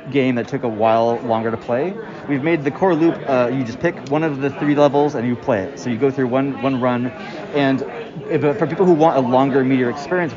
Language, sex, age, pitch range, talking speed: English, male, 30-49, 120-150 Hz, 250 wpm